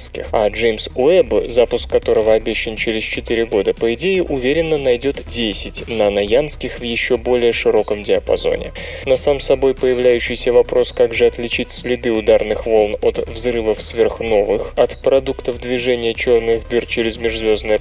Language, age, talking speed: Russian, 20-39, 140 wpm